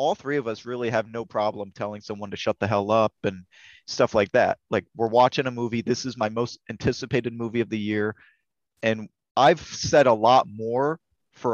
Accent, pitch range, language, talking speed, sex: American, 110-140 Hz, English, 210 wpm, male